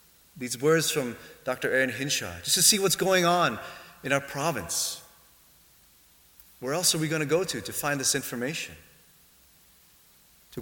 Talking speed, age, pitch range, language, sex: 160 wpm, 30-49, 110-160 Hz, English, male